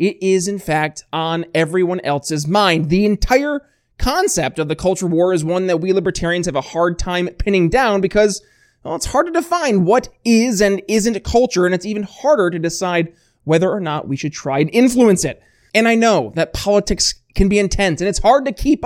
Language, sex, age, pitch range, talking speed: English, male, 20-39, 160-210 Hz, 210 wpm